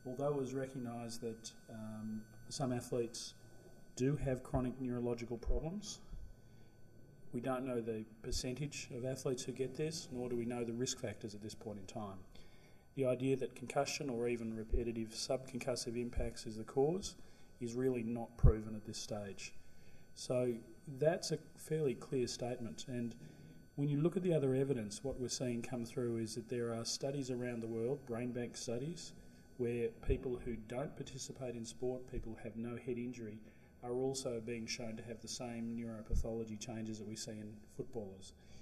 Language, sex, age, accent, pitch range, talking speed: English, male, 40-59, Australian, 115-130 Hz, 175 wpm